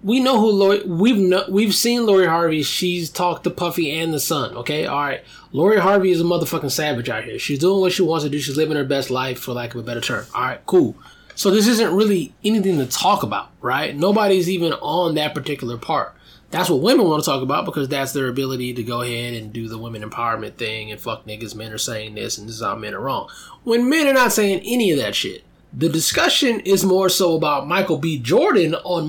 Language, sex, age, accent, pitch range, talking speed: English, male, 20-39, American, 150-210 Hz, 240 wpm